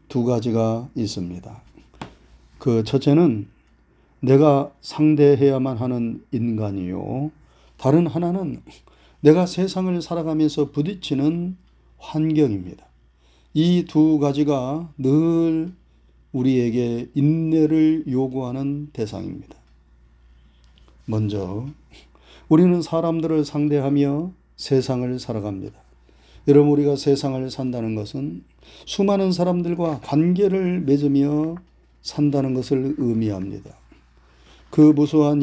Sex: male